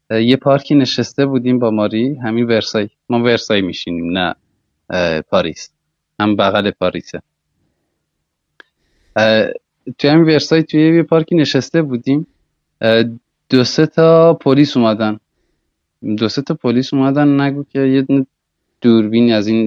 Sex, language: male, Persian